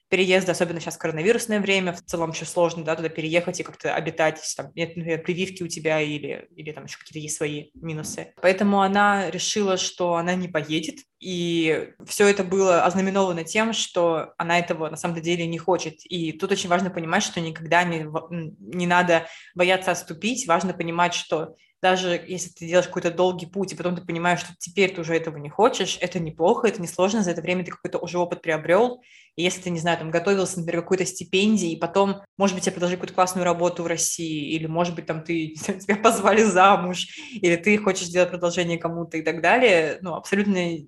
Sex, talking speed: female, 200 wpm